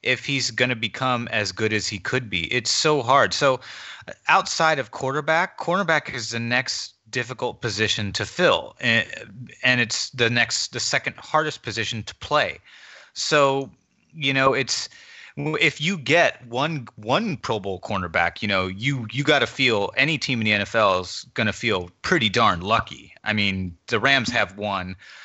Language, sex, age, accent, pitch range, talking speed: English, male, 30-49, American, 105-130 Hz, 175 wpm